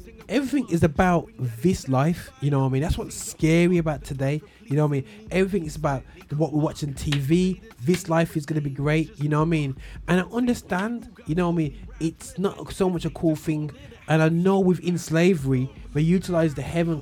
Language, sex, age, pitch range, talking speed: English, male, 20-39, 140-175 Hz, 220 wpm